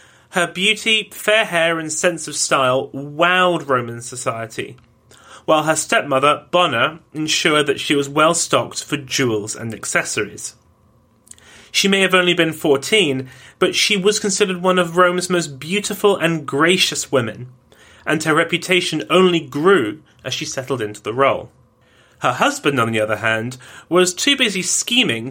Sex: male